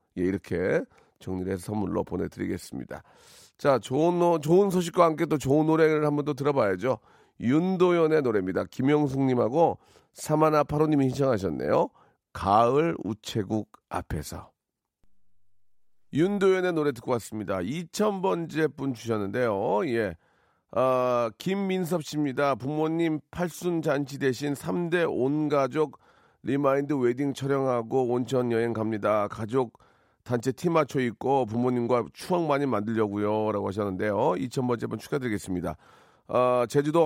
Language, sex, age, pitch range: Korean, male, 40-59, 105-150 Hz